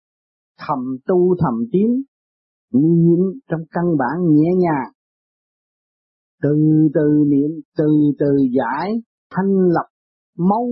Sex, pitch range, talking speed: male, 130-185 Hz, 105 wpm